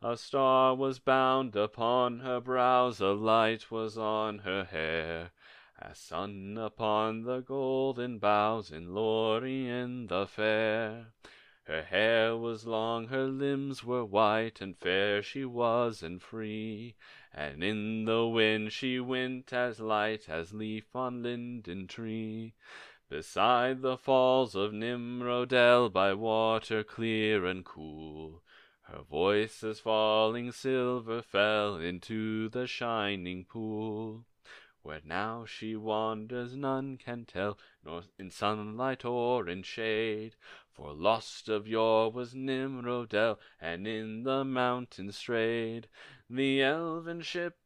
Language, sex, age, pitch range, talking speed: English, male, 30-49, 110-125 Hz, 120 wpm